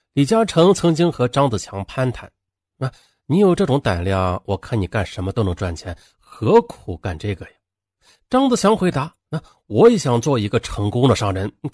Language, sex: Chinese, male